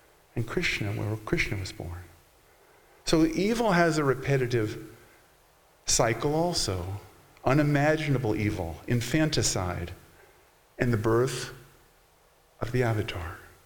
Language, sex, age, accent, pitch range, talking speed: English, male, 50-69, American, 105-135 Hz, 95 wpm